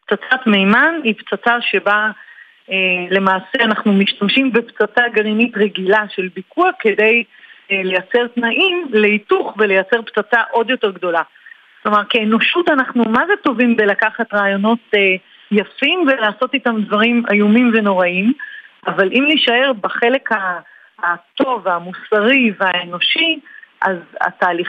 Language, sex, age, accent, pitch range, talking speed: Hebrew, female, 40-59, native, 195-255 Hz, 105 wpm